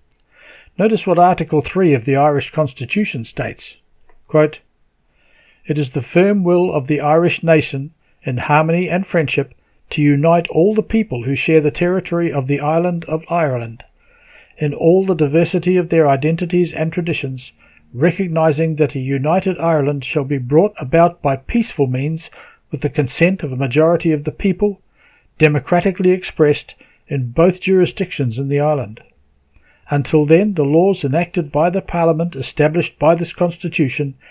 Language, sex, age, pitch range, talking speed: English, male, 60-79, 145-175 Hz, 150 wpm